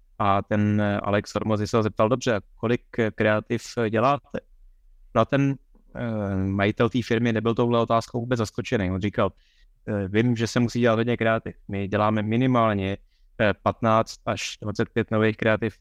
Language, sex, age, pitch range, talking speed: Czech, male, 20-39, 105-120 Hz, 145 wpm